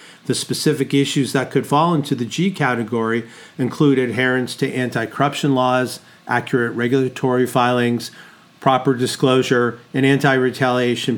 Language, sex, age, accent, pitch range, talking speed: English, male, 40-59, American, 120-150 Hz, 120 wpm